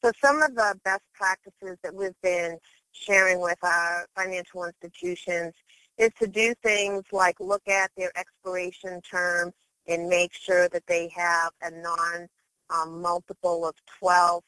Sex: female